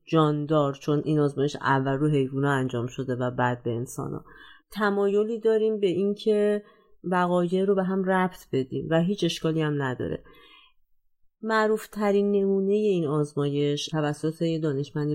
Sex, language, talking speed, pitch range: female, Persian, 145 wpm, 145-195 Hz